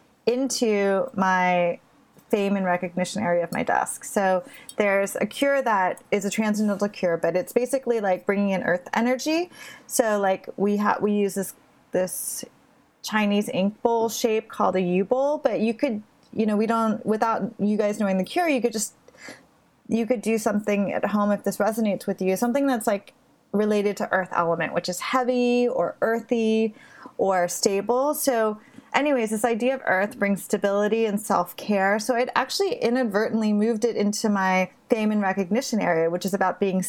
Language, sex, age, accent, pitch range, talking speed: English, female, 30-49, American, 195-245 Hz, 175 wpm